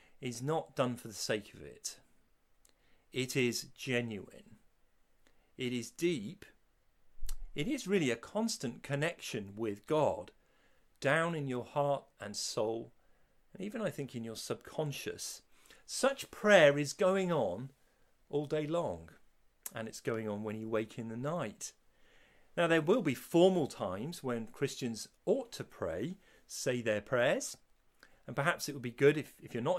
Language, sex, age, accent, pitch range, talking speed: English, male, 40-59, British, 125-180 Hz, 155 wpm